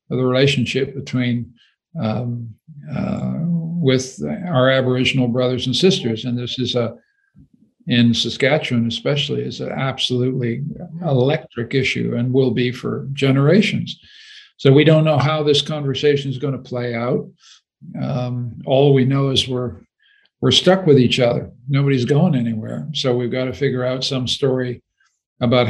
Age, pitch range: 50-69, 125-155 Hz